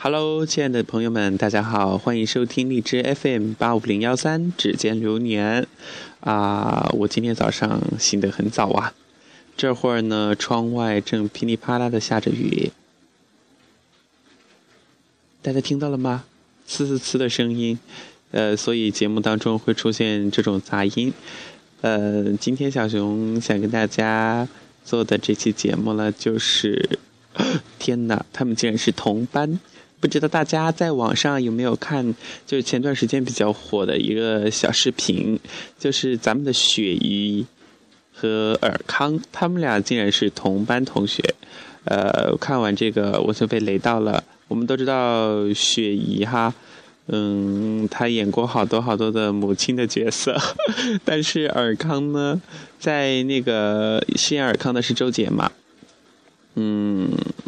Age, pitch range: 20-39, 105-130 Hz